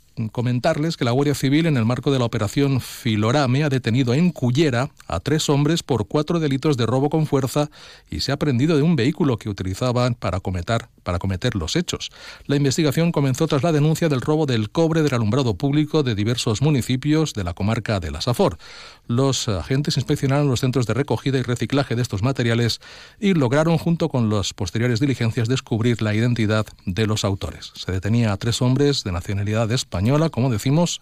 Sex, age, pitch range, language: male, 40-59, 110-150 Hz, Spanish